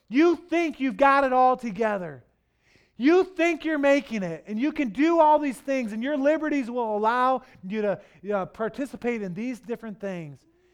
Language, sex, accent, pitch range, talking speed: English, male, American, 135-195 Hz, 175 wpm